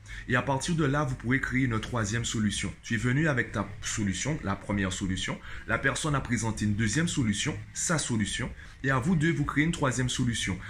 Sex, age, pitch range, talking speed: male, 20-39, 110-135 Hz, 215 wpm